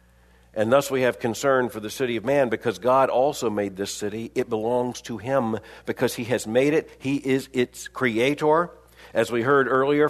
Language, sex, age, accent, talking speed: English, male, 50-69, American, 195 wpm